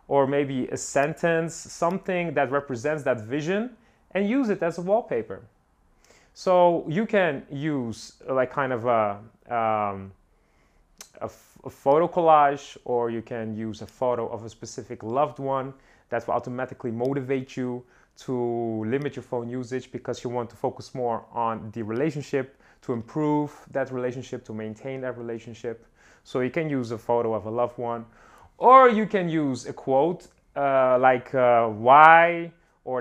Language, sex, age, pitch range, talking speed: English, male, 30-49, 125-160 Hz, 160 wpm